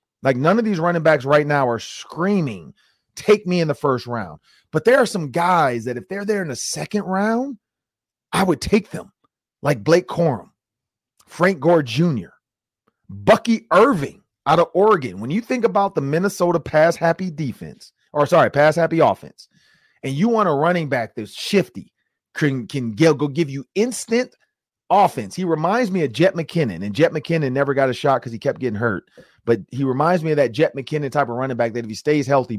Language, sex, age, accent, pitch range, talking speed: English, male, 30-49, American, 130-180 Hz, 200 wpm